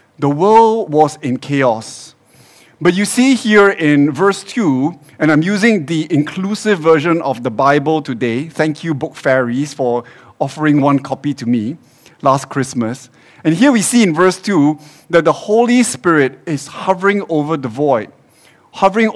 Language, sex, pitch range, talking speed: English, male, 140-190 Hz, 160 wpm